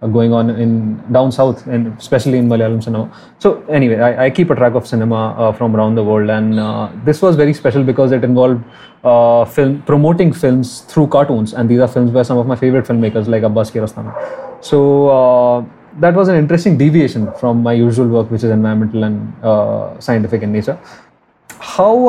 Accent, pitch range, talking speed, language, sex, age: Indian, 115-145 Hz, 200 wpm, English, male, 20-39